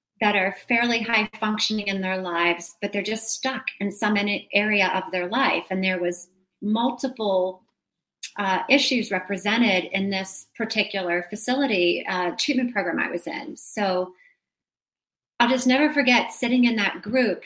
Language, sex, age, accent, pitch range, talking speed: English, female, 30-49, American, 185-230 Hz, 150 wpm